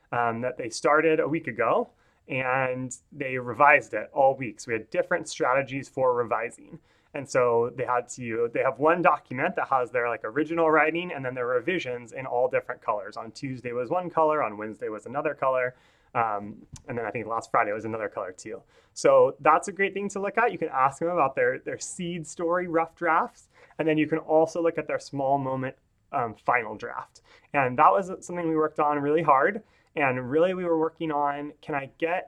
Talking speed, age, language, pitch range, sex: 210 wpm, 30-49, English, 135-170 Hz, male